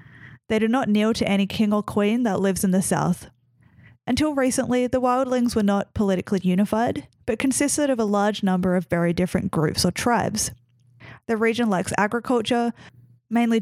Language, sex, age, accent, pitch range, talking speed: English, female, 10-29, Australian, 175-225 Hz, 170 wpm